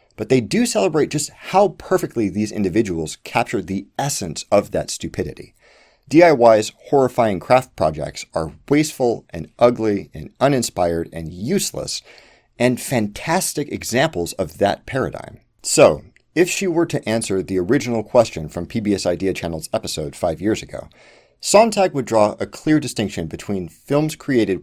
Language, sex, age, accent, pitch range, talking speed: English, male, 40-59, American, 95-145 Hz, 145 wpm